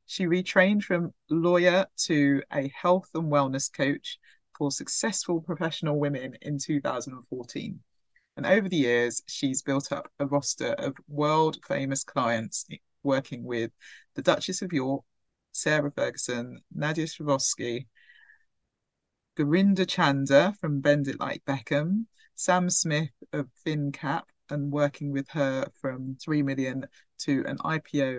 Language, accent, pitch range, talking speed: English, British, 135-165 Hz, 125 wpm